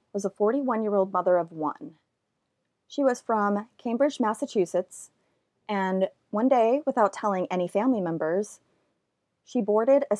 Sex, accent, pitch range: female, American, 175-230 Hz